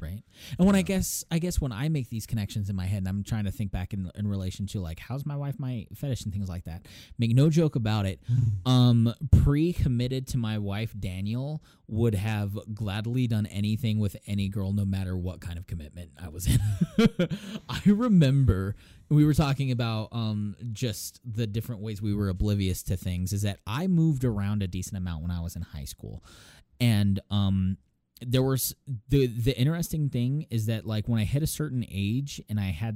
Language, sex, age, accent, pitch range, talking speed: English, male, 20-39, American, 95-120 Hz, 210 wpm